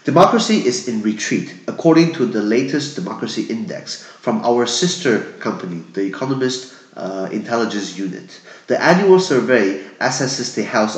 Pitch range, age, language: 100-140 Hz, 30-49, Chinese